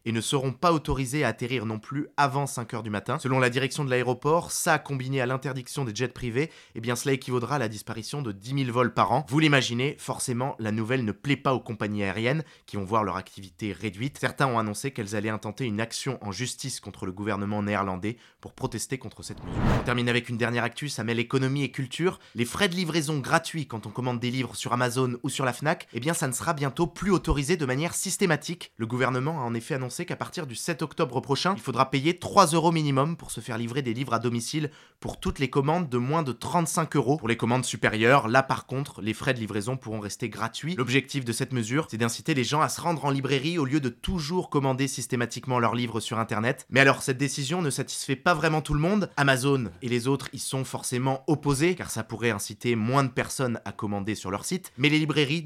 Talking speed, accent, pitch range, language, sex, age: 235 wpm, French, 115-145 Hz, French, male, 20-39